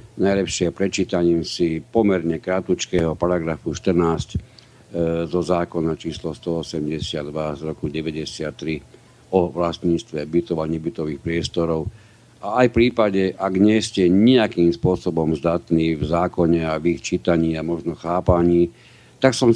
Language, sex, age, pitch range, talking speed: Slovak, male, 60-79, 85-105 Hz, 125 wpm